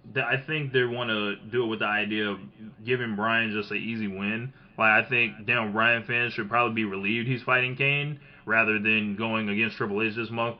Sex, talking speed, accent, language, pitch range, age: male, 215 wpm, American, English, 110-135 Hz, 20-39